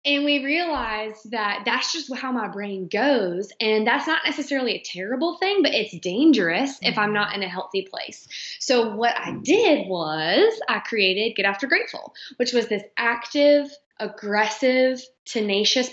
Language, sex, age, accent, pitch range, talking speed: English, female, 20-39, American, 195-255 Hz, 160 wpm